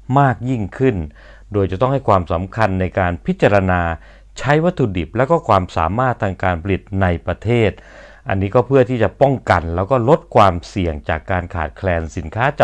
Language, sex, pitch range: Thai, male, 90-115 Hz